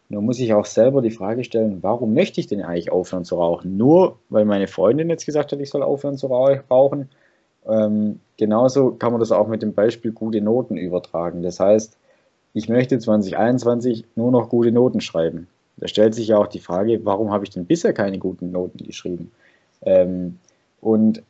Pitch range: 105-130 Hz